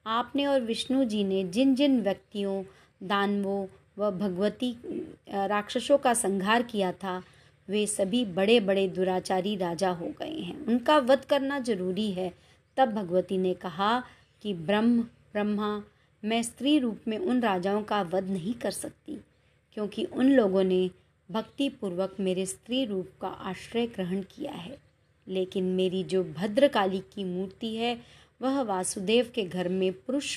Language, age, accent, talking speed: Hindi, 30-49, native, 150 wpm